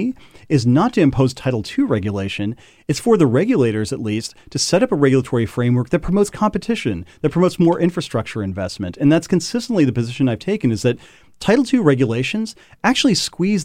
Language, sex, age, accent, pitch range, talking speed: English, male, 40-59, American, 115-155 Hz, 180 wpm